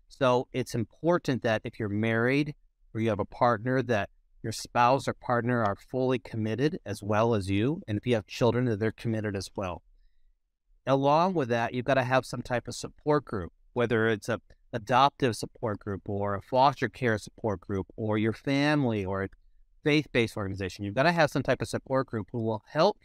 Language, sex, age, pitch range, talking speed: Urdu, male, 40-59, 105-130 Hz, 200 wpm